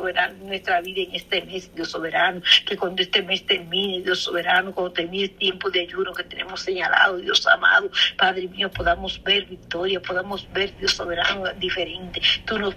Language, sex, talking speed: Spanish, female, 175 wpm